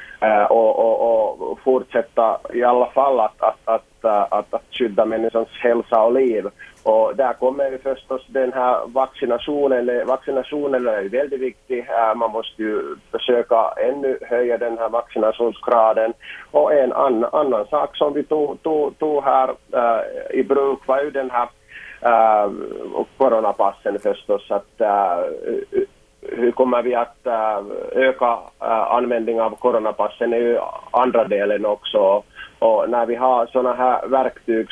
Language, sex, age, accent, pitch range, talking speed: Swedish, male, 30-49, Finnish, 115-135 Hz, 140 wpm